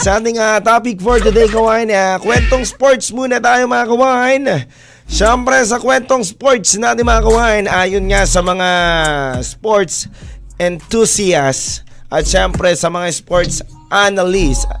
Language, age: Filipino, 20-39